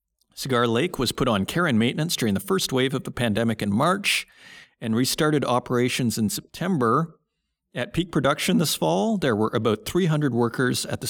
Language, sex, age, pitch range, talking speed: English, male, 40-59, 110-145 Hz, 185 wpm